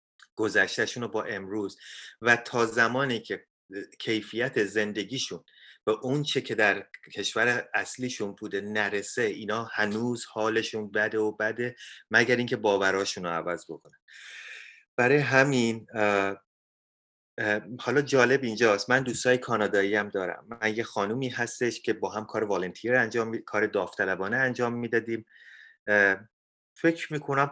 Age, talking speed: 30-49, 130 wpm